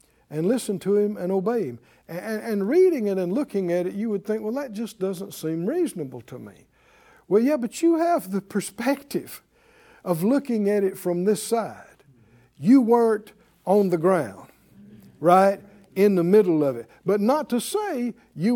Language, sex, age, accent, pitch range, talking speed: English, male, 60-79, American, 175-275 Hz, 180 wpm